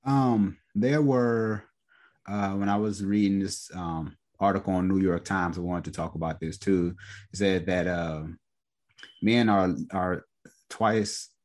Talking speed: 160 wpm